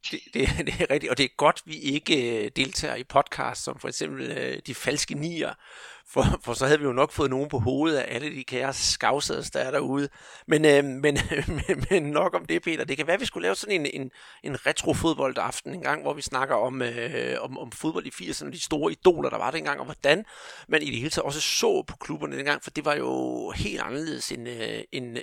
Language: Danish